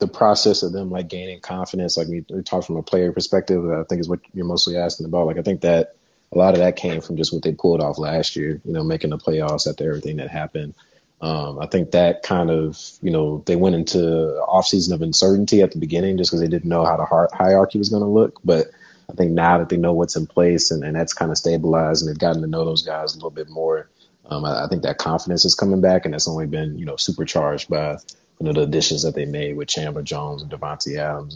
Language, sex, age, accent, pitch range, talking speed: English, male, 30-49, American, 80-90 Hz, 260 wpm